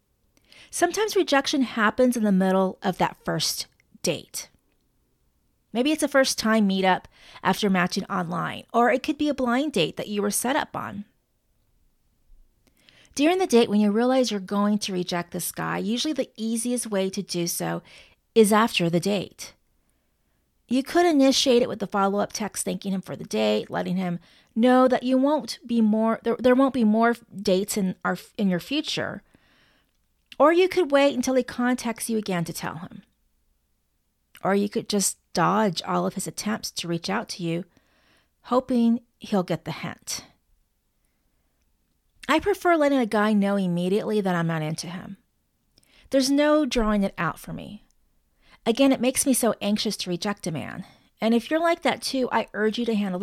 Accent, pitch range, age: American, 185-250 Hz, 30-49